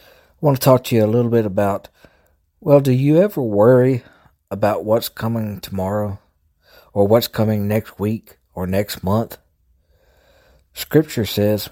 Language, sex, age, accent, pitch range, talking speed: English, male, 60-79, American, 90-115 Hz, 150 wpm